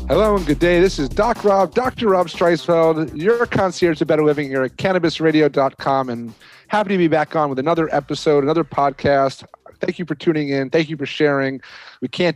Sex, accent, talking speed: male, American, 200 wpm